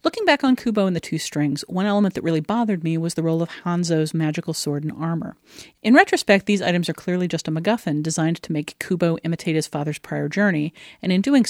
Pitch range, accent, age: 155-190 Hz, American, 40-59